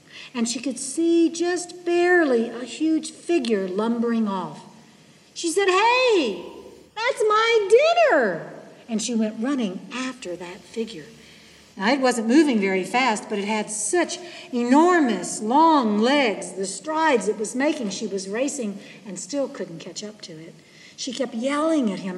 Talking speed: 155 wpm